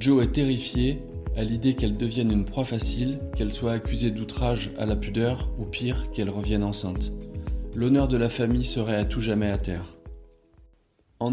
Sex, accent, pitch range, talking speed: male, French, 110-130 Hz, 175 wpm